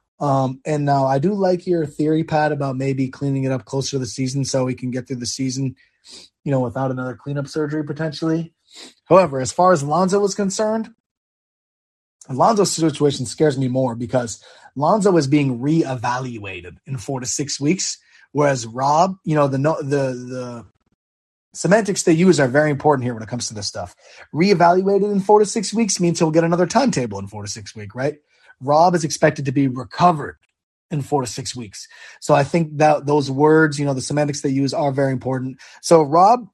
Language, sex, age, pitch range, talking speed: English, male, 20-39, 130-165 Hz, 195 wpm